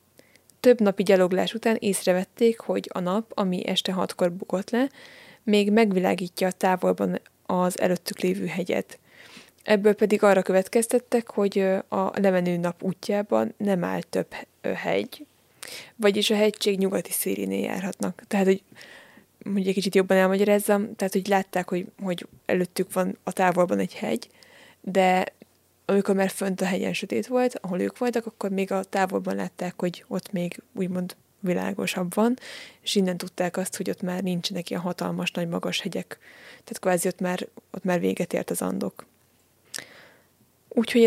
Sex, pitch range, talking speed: female, 185-215 Hz, 150 wpm